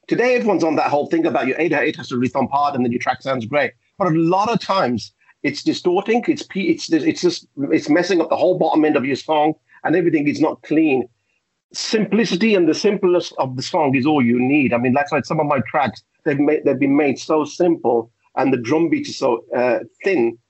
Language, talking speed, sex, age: English, 235 wpm, male, 50-69